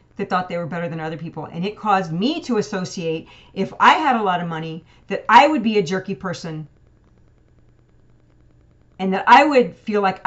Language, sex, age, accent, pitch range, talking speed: English, female, 40-59, American, 165-215 Hz, 200 wpm